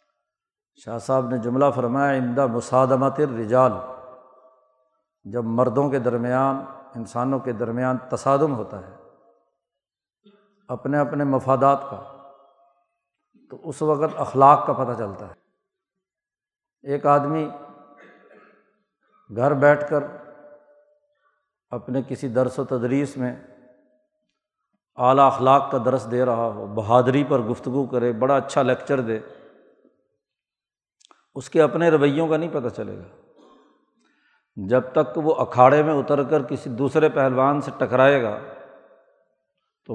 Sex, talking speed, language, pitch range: male, 120 wpm, Urdu, 125-150 Hz